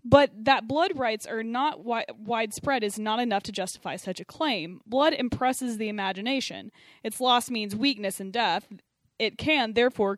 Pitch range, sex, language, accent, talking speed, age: 200-260 Hz, female, English, American, 165 wpm, 20-39